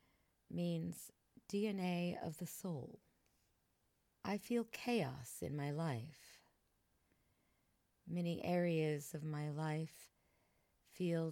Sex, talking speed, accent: female, 90 wpm, American